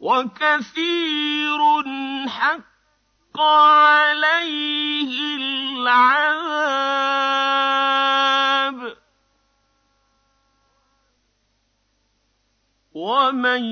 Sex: male